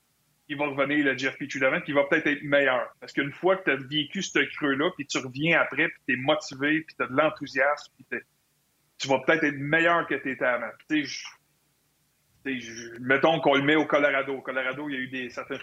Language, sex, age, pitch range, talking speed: French, male, 30-49, 135-160 Hz, 230 wpm